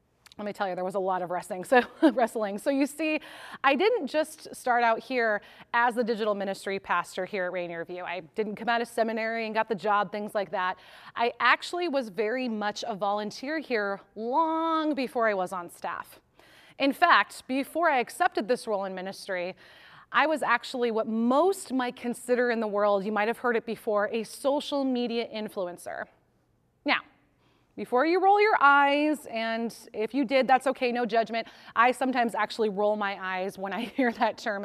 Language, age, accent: English, 30-49, American